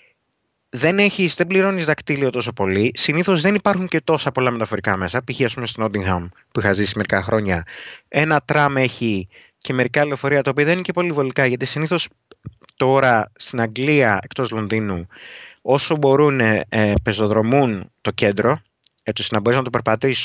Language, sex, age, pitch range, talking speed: Greek, male, 30-49, 125-170 Hz, 170 wpm